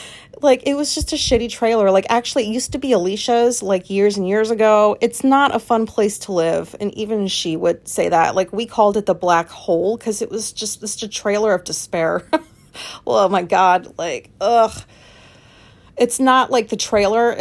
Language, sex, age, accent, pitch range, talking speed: English, female, 30-49, American, 175-220 Hz, 200 wpm